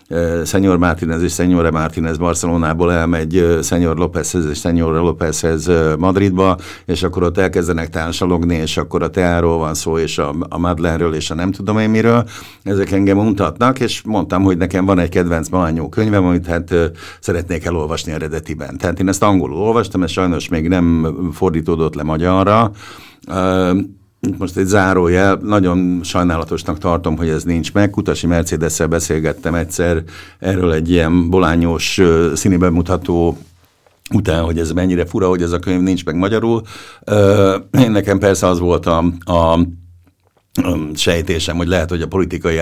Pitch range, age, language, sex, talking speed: 85-95 Hz, 60-79, Hungarian, male, 150 wpm